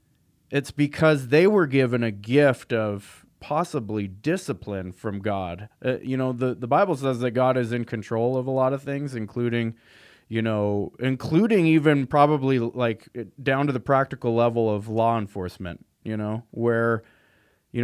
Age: 20-39